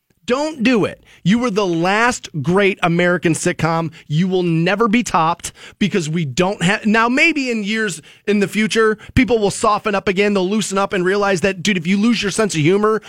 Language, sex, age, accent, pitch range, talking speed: English, male, 30-49, American, 170-215 Hz, 205 wpm